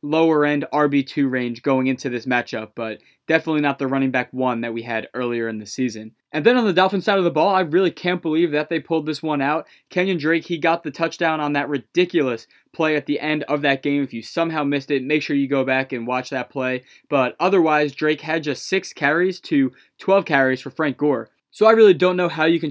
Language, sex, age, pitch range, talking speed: English, male, 20-39, 140-170 Hz, 245 wpm